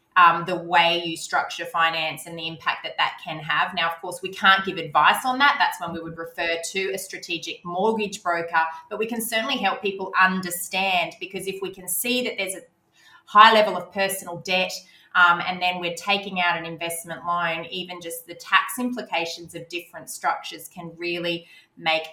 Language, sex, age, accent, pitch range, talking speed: English, female, 20-39, Australian, 170-200 Hz, 195 wpm